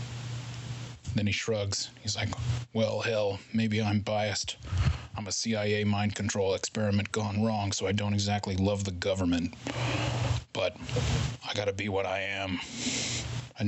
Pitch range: 100-120 Hz